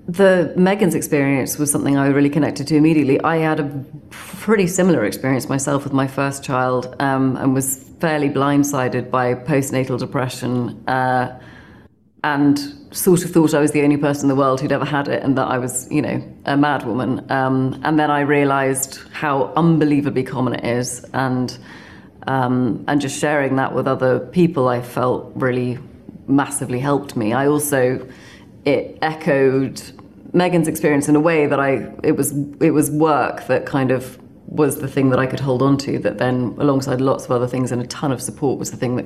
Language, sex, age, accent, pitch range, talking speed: English, female, 30-49, British, 130-150 Hz, 190 wpm